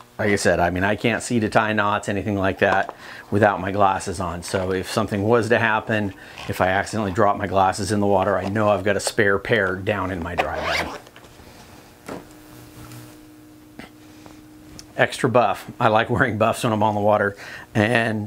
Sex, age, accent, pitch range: male, 50-69, American, 95-110 Hz